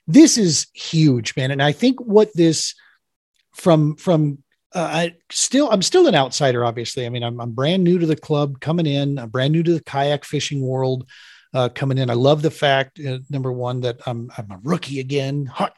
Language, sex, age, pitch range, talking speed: English, male, 40-59, 125-160 Hz, 210 wpm